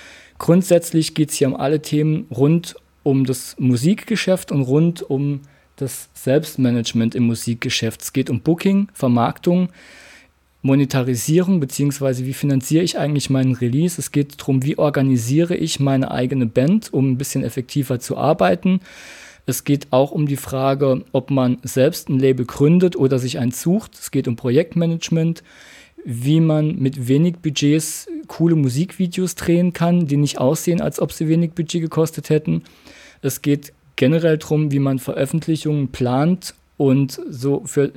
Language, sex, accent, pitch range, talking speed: German, male, German, 130-165 Hz, 150 wpm